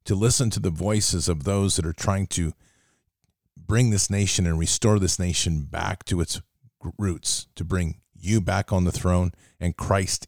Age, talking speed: 40-59, 180 wpm